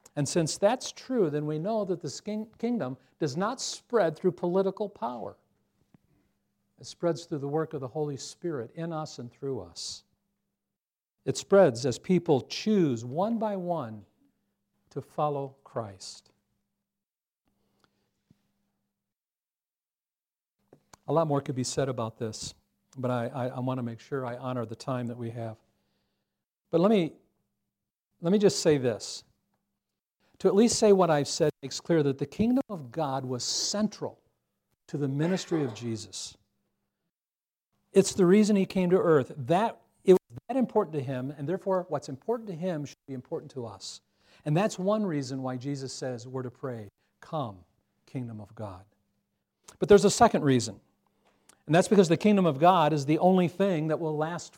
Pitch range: 125-185 Hz